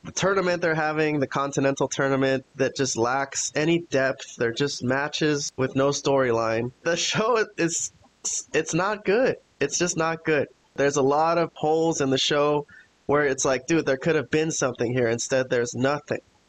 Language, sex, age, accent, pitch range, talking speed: English, male, 20-39, American, 135-160 Hz, 180 wpm